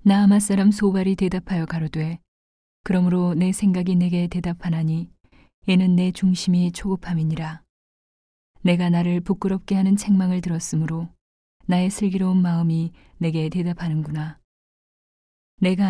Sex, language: female, Korean